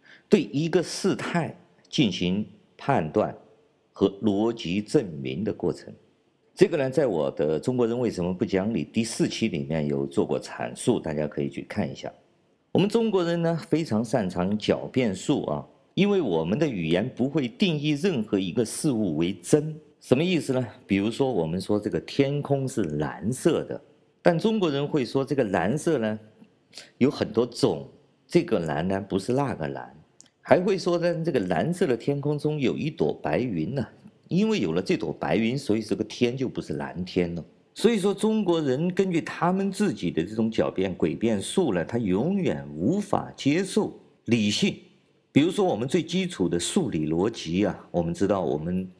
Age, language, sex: 50-69, Chinese, male